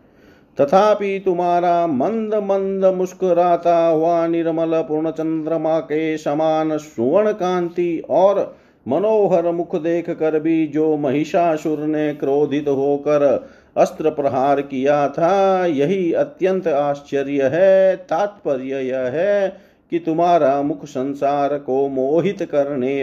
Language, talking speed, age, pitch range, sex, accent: Hindi, 105 wpm, 50-69, 140-180 Hz, male, native